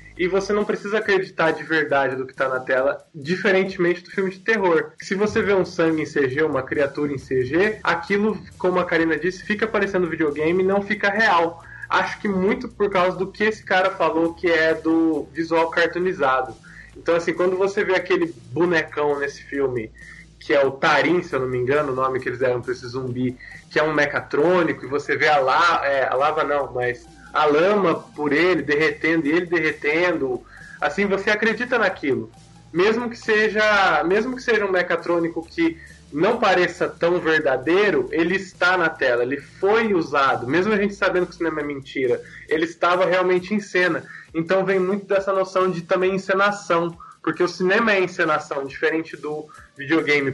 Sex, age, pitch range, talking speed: male, 20-39, 150-195 Hz, 190 wpm